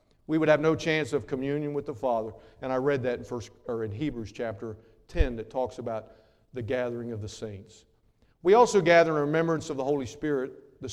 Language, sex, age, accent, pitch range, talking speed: English, male, 50-69, American, 115-180 Hz, 215 wpm